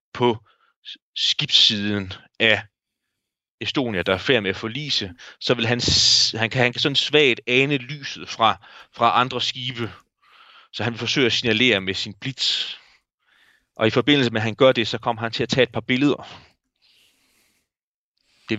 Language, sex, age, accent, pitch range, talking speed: Danish, male, 30-49, native, 100-140 Hz, 160 wpm